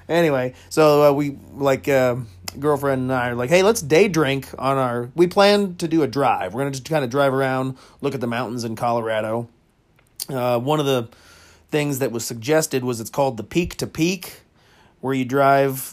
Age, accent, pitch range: 30-49, American, 120-150 Hz